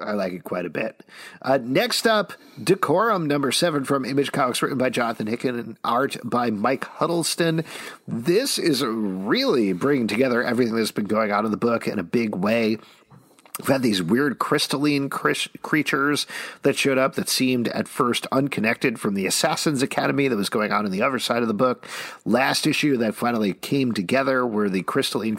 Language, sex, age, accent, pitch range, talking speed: English, male, 50-69, American, 115-150 Hz, 190 wpm